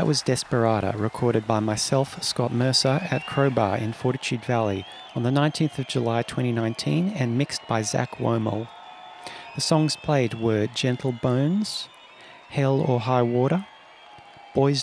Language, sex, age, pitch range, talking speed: English, male, 40-59, 120-145 Hz, 140 wpm